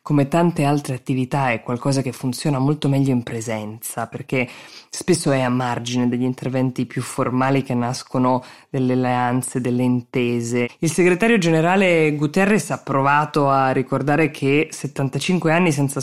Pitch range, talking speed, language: 125-150 Hz, 145 wpm, Italian